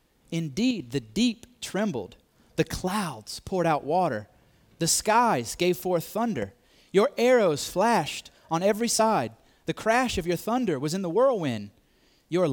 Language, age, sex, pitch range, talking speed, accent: English, 30-49, male, 125-190 Hz, 145 wpm, American